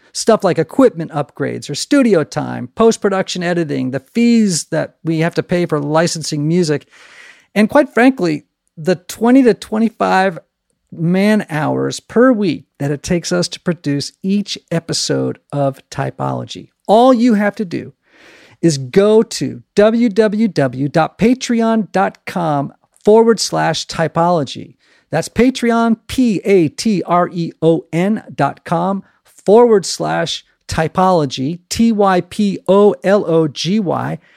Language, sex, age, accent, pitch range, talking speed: English, male, 50-69, American, 145-210 Hz, 105 wpm